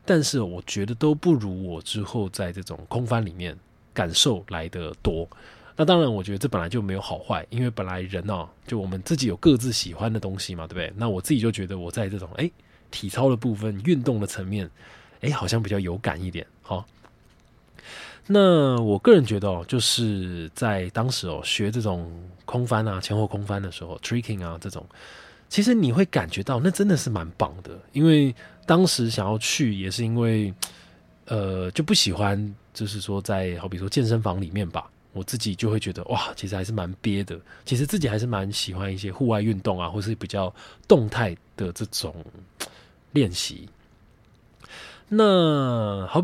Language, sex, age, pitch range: Chinese, male, 20-39, 95-125 Hz